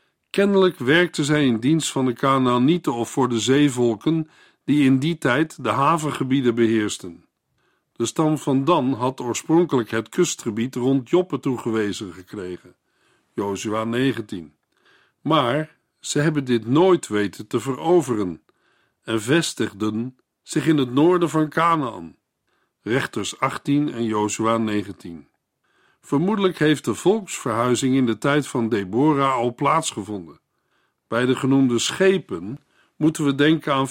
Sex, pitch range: male, 115-155 Hz